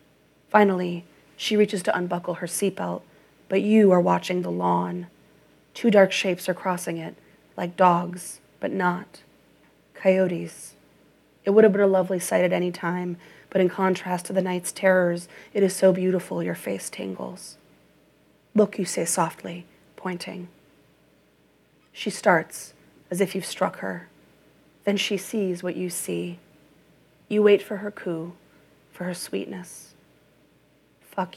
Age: 30-49